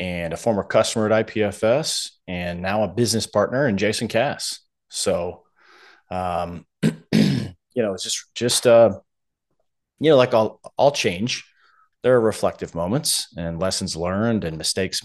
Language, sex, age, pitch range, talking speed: English, male, 30-49, 90-115 Hz, 150 wpm